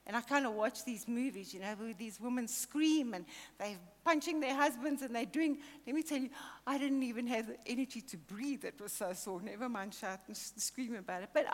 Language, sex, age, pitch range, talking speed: English, female, 60-79, 230-280 Hz, 240 wpm